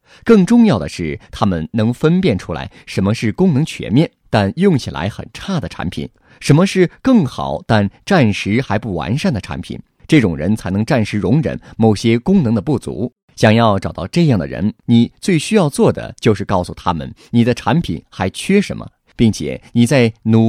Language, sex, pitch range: Chinese, male, 105-145 Hz